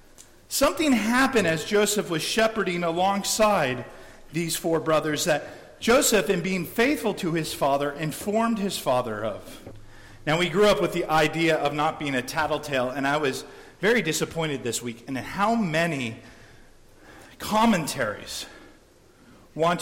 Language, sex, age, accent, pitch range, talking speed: English, male, 40-59, American, 145-195 Hz, 140 wpm